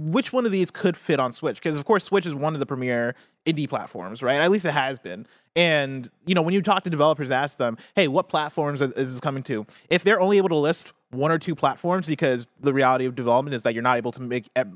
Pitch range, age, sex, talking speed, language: 125-160 Hz, 20-39, male, 260 wpm, English